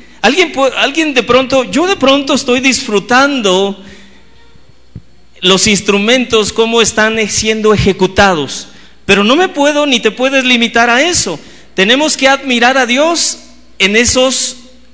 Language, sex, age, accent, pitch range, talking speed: Spanish, male, 40-59, Mexican, 170-255 Hz, 135 wpm